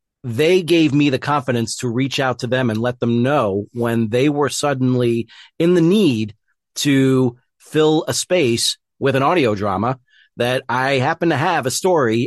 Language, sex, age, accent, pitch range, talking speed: English, male, 40-59, American, 120-140 Hz, 175 wpm